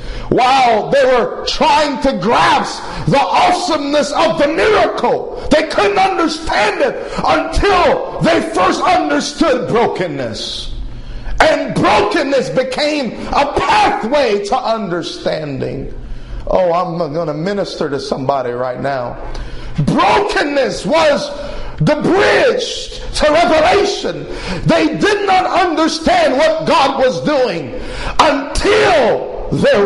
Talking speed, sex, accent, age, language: 105 wpm, male, American, 50-69, English